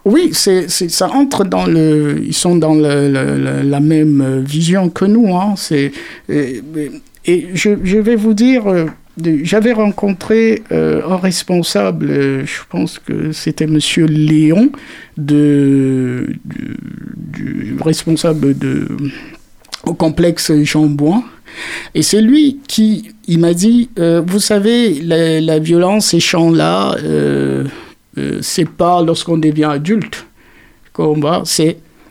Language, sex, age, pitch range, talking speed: French, male, 50-69, 150-190 Hz, 130 wpm